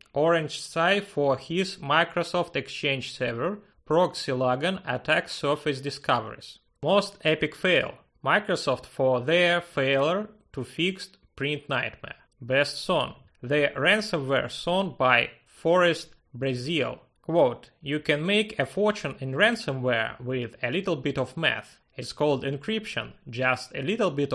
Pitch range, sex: 130-180 Hz, male